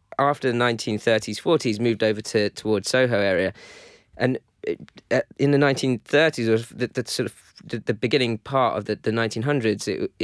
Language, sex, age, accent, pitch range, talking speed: English, male, 20-39, British, 105-125 Hz, 175 wpm